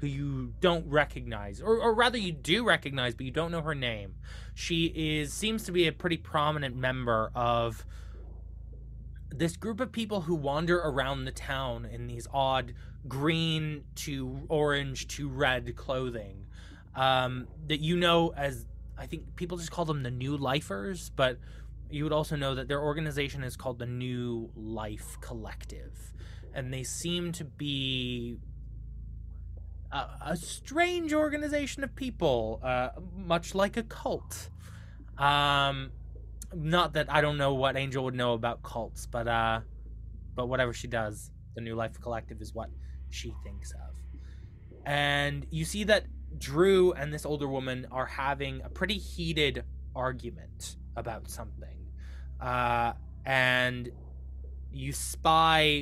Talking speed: 145 wpm